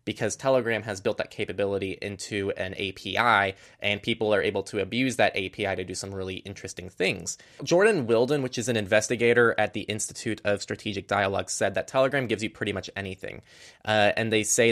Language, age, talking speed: English, 20-39, 190 wpm